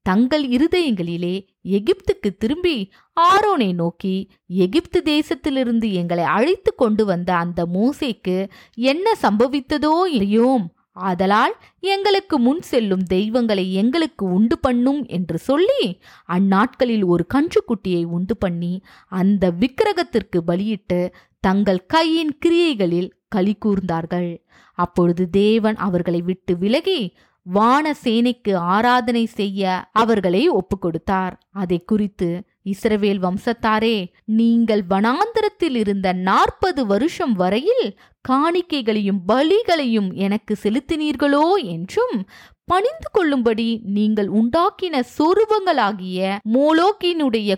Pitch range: 190-290 Hz